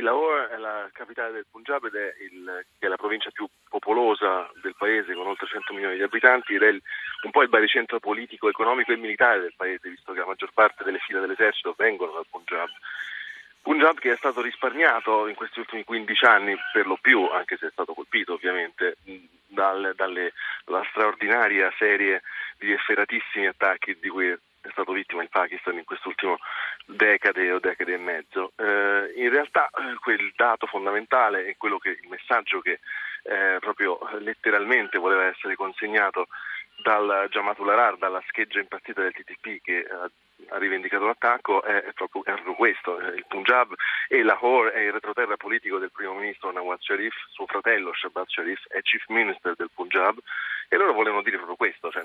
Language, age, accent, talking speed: Italian, 30-49, native, 175 wpm